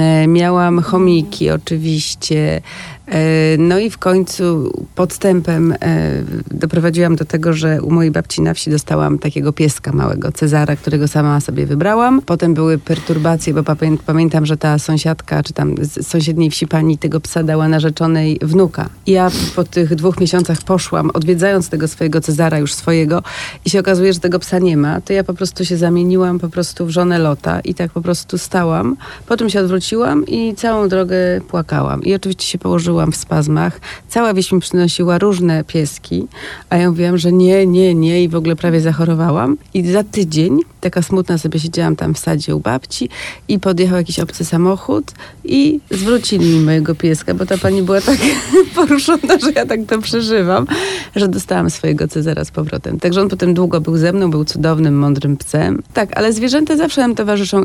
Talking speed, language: 175 wpm, Polish